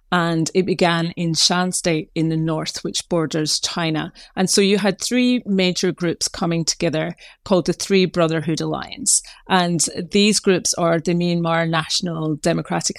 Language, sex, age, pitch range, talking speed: English, female, 30-49, 165-190 Hz, 155 wpm